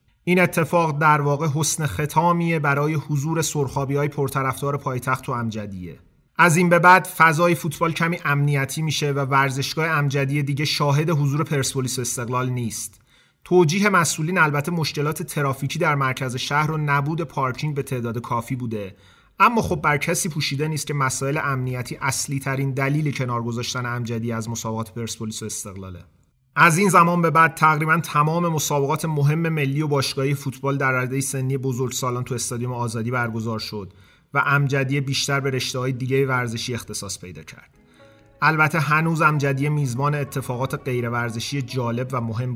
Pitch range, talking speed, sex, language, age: 125-150 Hz, 150 wpm, male, Persian, 30-49